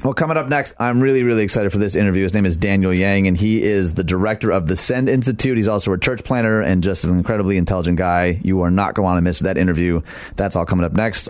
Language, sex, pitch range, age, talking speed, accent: English, male, 100-130 Hz, 30-49, 270 wpm, American